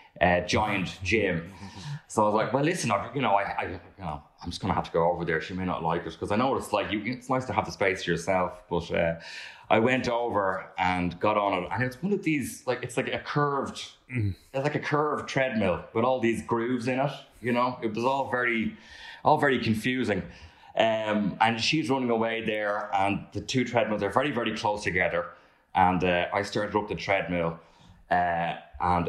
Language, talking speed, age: English, 220 wpm, 20-39